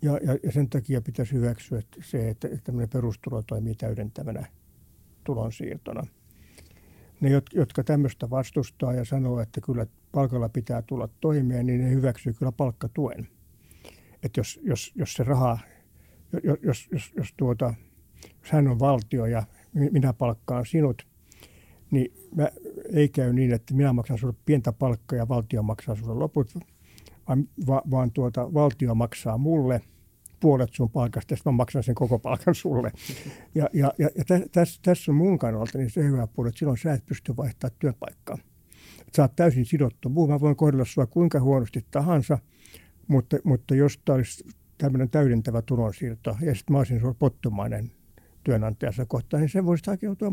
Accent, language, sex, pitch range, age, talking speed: native, Finnish, male, 115-145 Hz, 60-79, 155 wpm